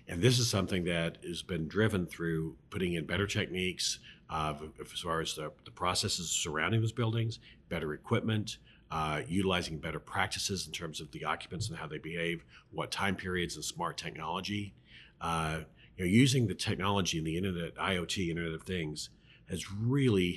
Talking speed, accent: 175 wpm, American